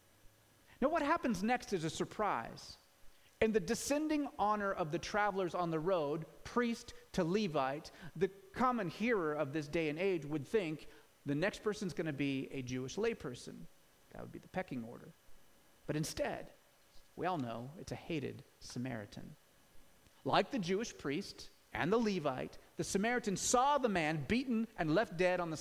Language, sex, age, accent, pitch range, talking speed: English, male, 30-49, American, 155-220 Hz, 165 wpm